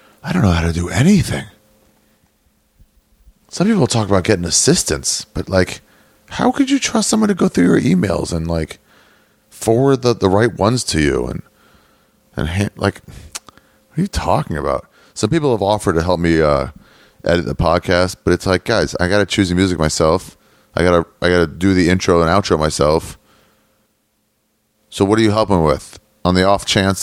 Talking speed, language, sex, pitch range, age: 190 wpm, English, male, 85-110 Hz, 30-49